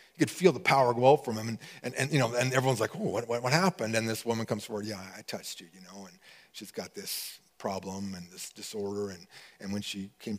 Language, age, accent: English, 40-59, American